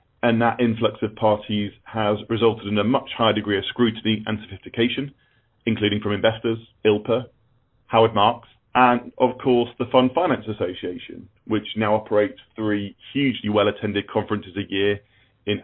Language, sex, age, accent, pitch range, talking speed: English, male, 40-59, British, 110-125 Hz, 150 wpm